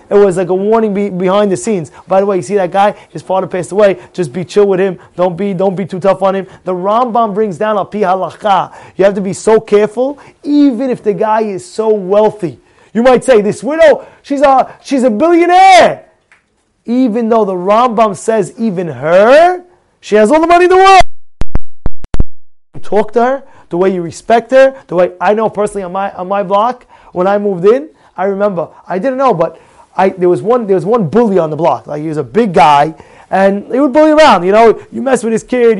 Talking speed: 225 wpm